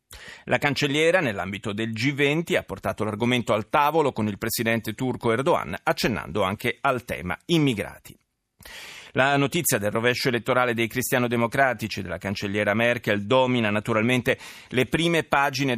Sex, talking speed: male, 135 wpm